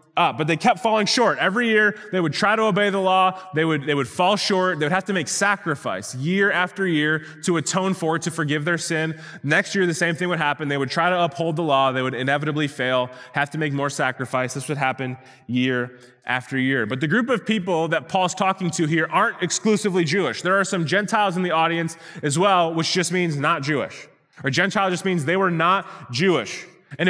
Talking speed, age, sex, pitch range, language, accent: 225 wpm, 20-39, male, 150-185 Hz, English, American